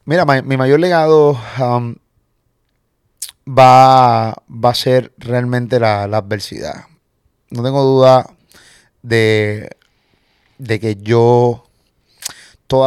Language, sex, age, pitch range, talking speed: Spanish, male, 30-49, 115-130 Hz, 95 wpm